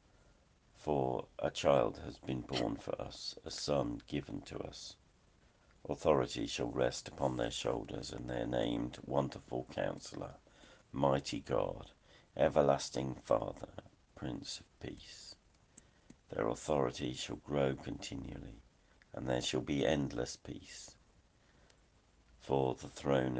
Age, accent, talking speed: 60-79, British, 115 wpm